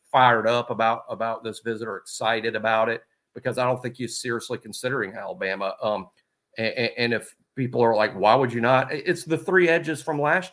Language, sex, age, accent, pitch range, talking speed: English, male, 50-69, American, 115-130 Hz, 200 wpm